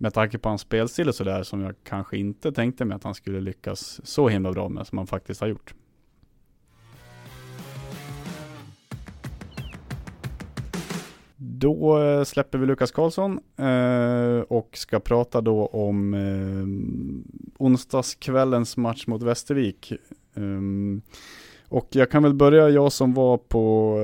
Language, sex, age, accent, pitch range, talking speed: Swedish, male, 30-49, Norwegian, 100-125 Hz, 120 wpm